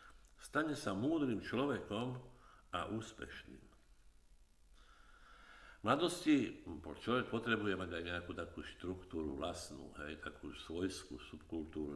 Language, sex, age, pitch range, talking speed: Slovak, male, 60-79, 75-105 Hz, 100 wpm